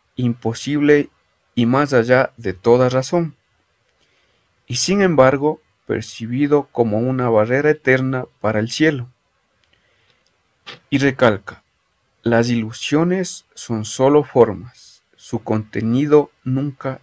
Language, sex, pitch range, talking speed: Spanish, male, 115-145 Hz, 100 wpm